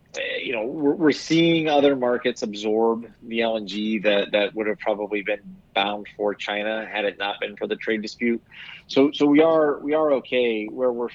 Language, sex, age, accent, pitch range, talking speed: English, male, 30-49, American, 110-135 Hz, 190 wpm